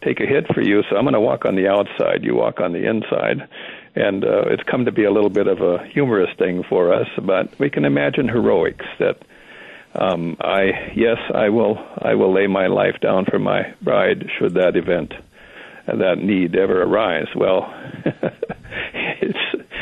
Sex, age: male, 60-79